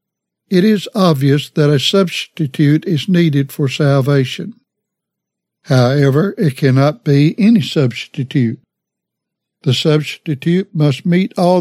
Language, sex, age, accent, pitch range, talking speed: English, male, 60-79, American, 135-175 Hz, 110 wpm